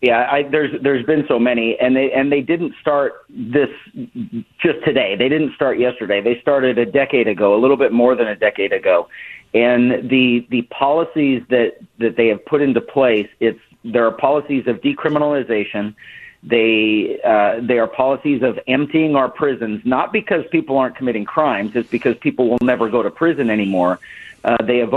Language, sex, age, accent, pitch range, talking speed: English, male, 40-59, American, 120-145 Hz, 185 wpm